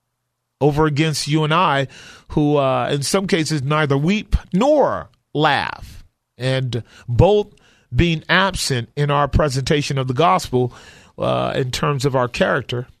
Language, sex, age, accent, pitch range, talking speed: English, male, 40-59, American, 125-165 Hz, 140 wpm